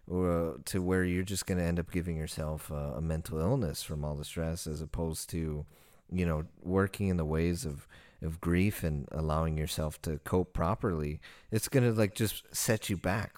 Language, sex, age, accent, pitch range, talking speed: English, male, 30-49, American, 80-100 Hz, 195 wpm